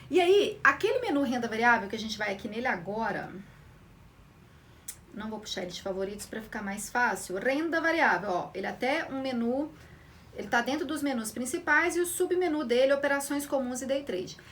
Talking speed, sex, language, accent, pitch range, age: 185 wpm, female, Portuguese, Brazilian, 255-350 Hz, 40-59